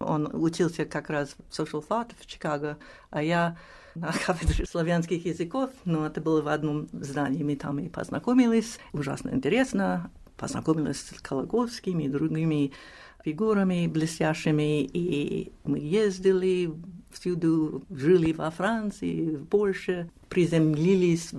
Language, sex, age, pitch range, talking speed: Russian, female, 50-69, 150-190 Hz, 120 wpm